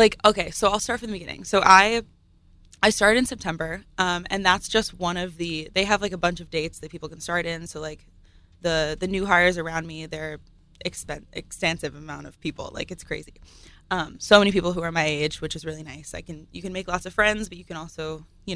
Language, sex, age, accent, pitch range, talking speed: English, female, 20-39, American, 155-185 Hz, 245 wpm